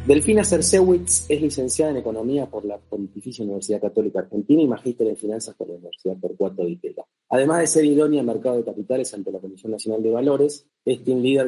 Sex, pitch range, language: male, 105-145 Hz, Spanish